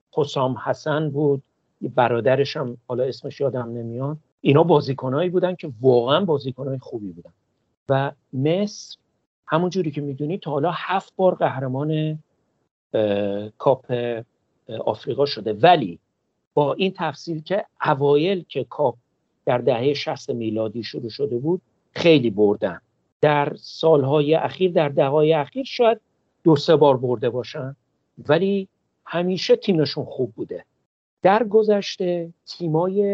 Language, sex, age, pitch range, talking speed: Persian, male, 50-69, 130-165 Hz, 125 wpm